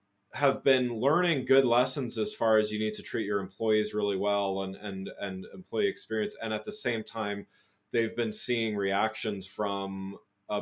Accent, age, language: American, 30-49, English